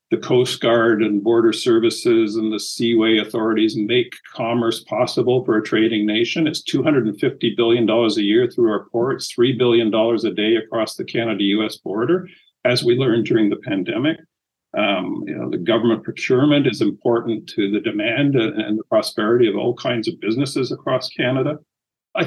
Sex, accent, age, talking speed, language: male, American, 50-69, 160 wpm, English